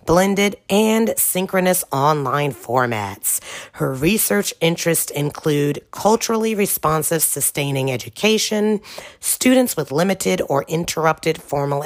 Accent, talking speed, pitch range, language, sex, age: American, 95 wpm, 135-185 Hz, English, female, 40-59